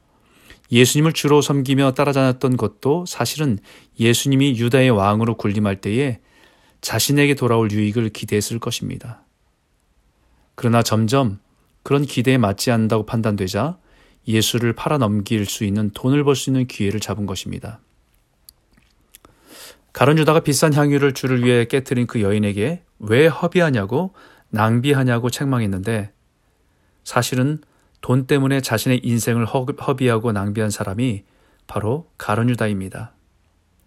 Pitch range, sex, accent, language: 105-135 Hz, male, native, Korean